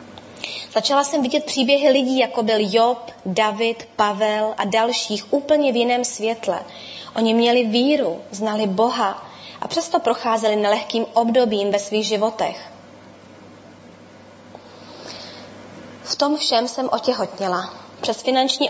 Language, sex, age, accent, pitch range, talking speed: Czech, female, 20-39, native, 215-255 Hz, 115 wpm